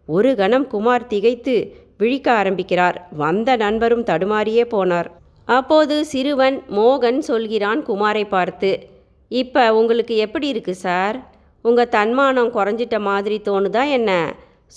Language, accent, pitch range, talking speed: Tamil, native, 195-255 Hz, 110 wpm